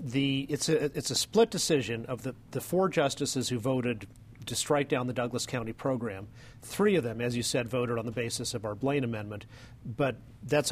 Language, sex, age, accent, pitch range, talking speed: English, male, 40-59, American, 120-145 Hz, 195 wpm